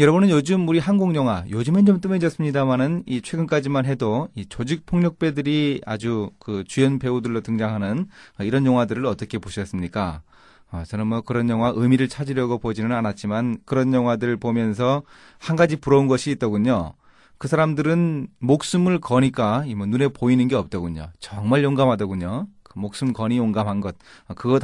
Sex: male